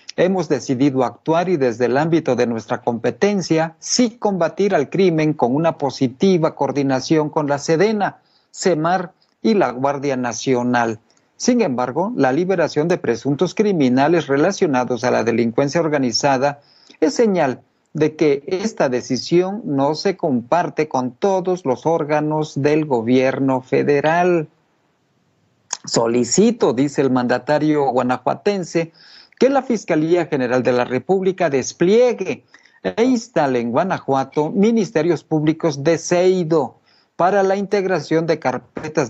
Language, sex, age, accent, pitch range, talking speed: Spanish, male, 50-69, Mexican, 135-180 Hz, 125 wpm